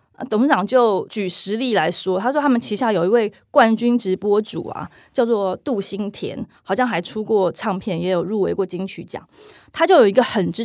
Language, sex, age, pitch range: Chinese, female, 20-39, 195-250 Hz